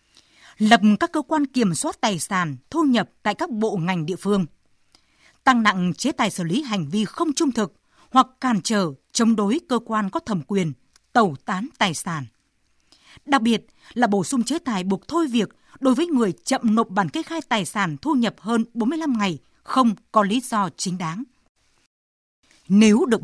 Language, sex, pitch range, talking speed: Vietnamese, female, 185-255 Hz, 190 wpm